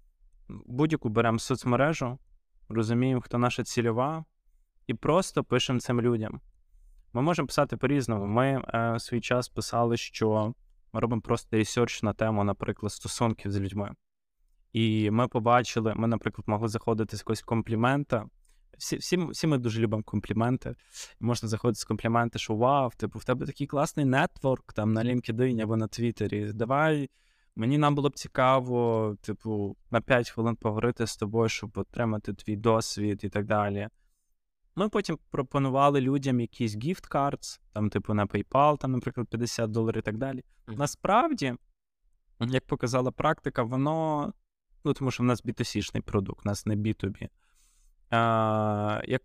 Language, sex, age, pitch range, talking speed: Ukrainian, male, 20-39, 105-130 Hz, 155 wpm